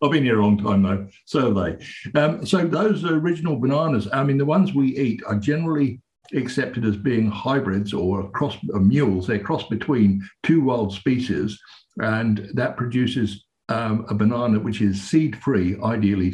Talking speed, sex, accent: 175 wpm, male, British